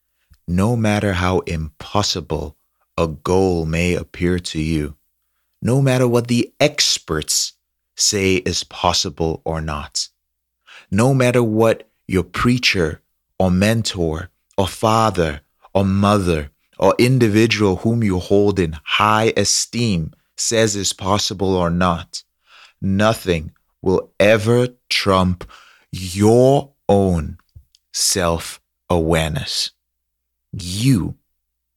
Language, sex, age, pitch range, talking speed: English, male, 30-49, 80-100 Hz, 100 wpm